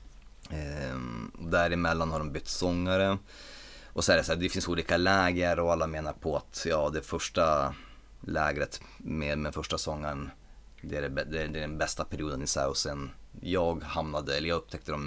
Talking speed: 180 wpm